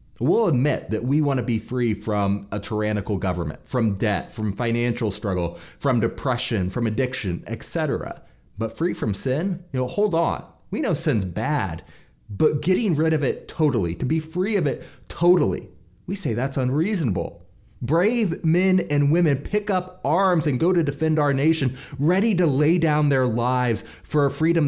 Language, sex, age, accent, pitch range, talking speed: English, male, 30-49, American, 110-160 Hz, 175 wpm